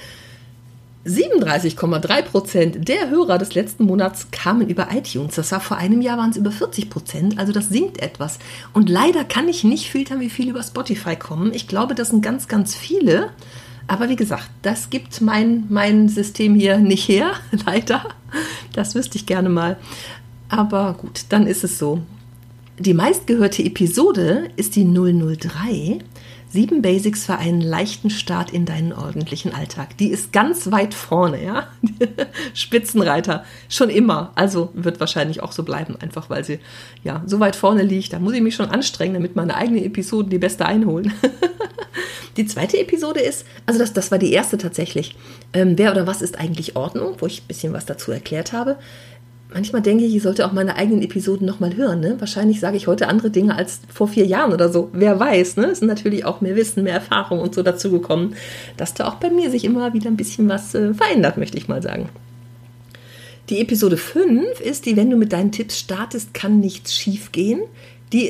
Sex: female